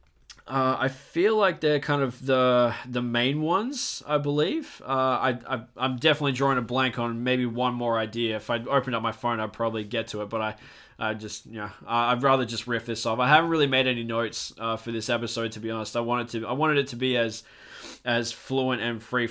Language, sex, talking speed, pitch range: English, male, 235 wpm, 115-135 Hz